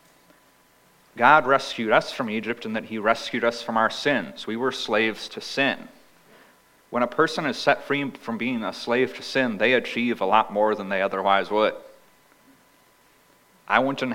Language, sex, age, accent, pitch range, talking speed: English, male, 30-49, American, 105-125 Hz, 175 wpm